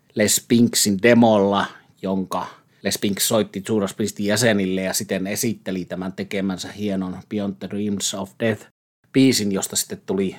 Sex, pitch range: male, 95-110 Hz